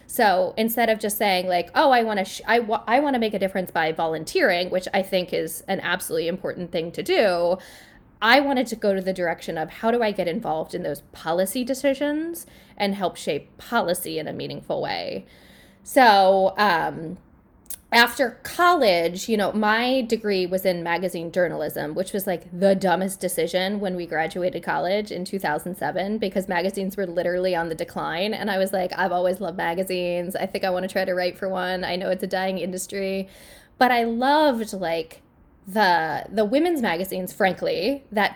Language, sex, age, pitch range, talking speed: English, female, 10-29, 180-235 Hz, 185 wpm